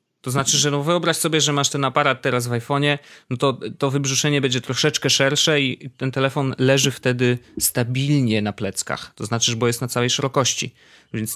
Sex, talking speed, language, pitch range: male, 195 wpm, Polish, 115-145 Hz